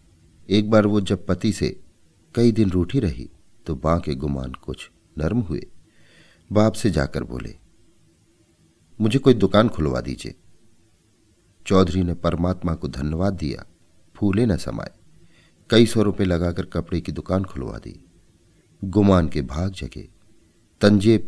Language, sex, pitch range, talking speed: Hindi, male, 80-100 Hz, 140 wpm